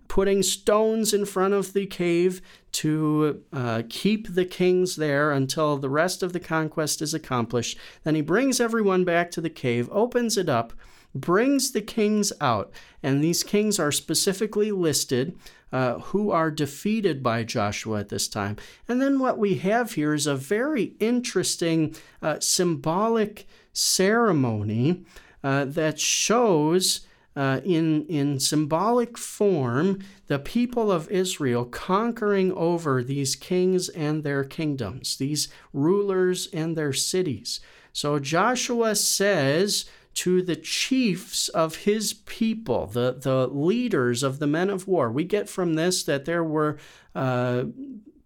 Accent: American